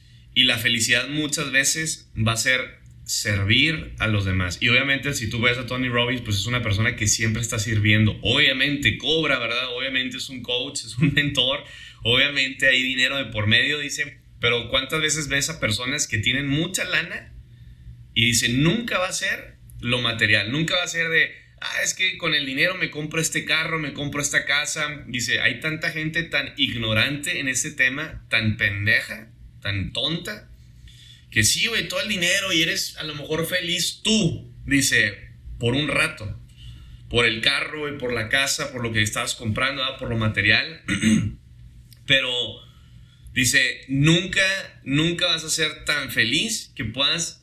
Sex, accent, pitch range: male, Mexican, 110-150 Hz